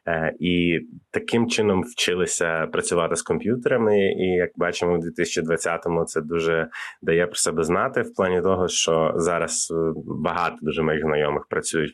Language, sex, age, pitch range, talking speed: Ukrainian, male, 20-39, 80-90 Hz, 140 wpm